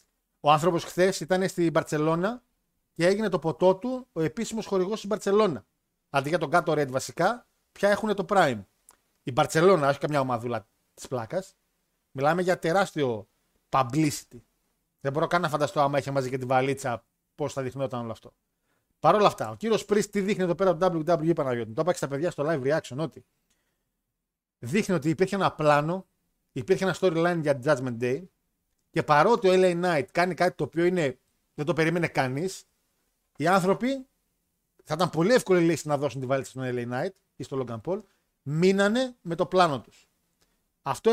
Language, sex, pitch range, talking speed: Greek, male, 140-190 Hz, 175 wpm